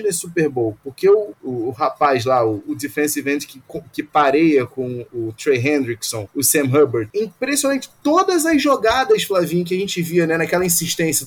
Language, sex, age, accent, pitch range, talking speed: Portuguese, male, 20-39, Brazilian, 150-220 Hz, 185 wpm